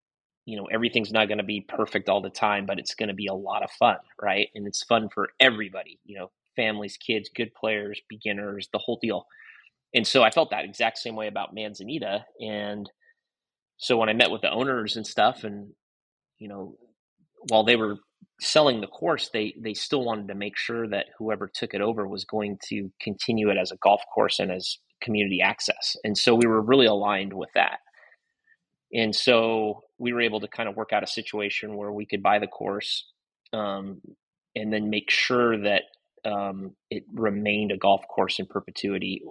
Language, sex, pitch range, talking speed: English, male, 100-110 Hz, 200 wpm